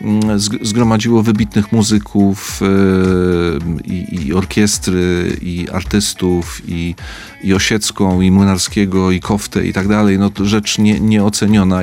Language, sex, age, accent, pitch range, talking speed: Polish, male, 40-59, native, 90-100 Hz, 95 wpm